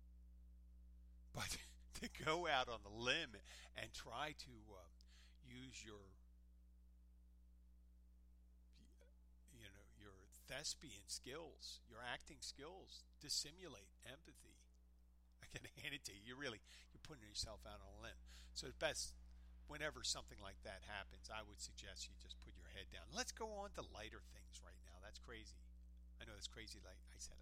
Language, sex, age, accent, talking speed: English, male, 50-69, American, 160 wpm